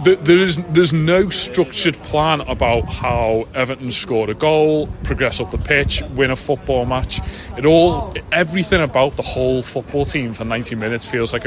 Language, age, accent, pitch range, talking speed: English, 30-49, British, 115-150 Hz, 175 wpm